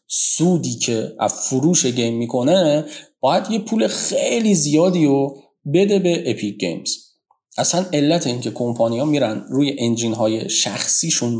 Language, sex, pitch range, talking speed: Persian, male, 110-150 Hz, 130 wpm